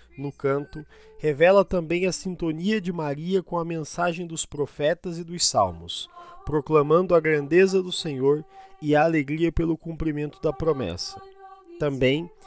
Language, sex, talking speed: Portuguese, male, 140 wpm